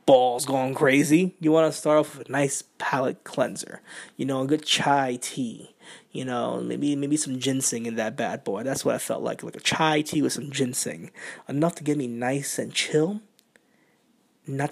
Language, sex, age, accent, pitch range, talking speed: English, male, 20-39, American, 130-155 Hz, 200 wpm